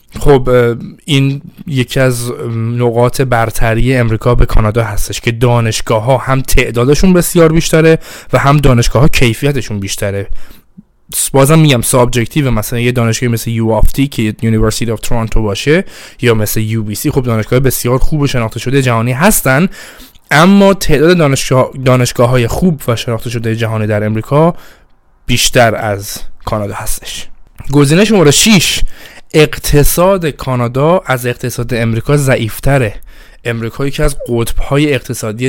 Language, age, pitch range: Persian, 20-39, 115-140 Hz